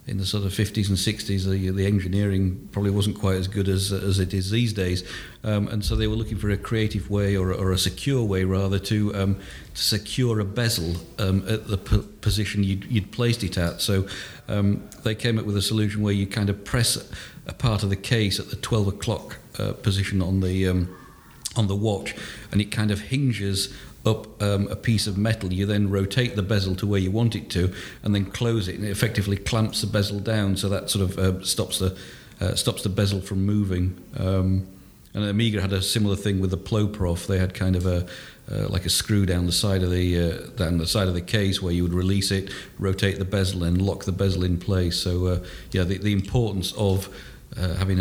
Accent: British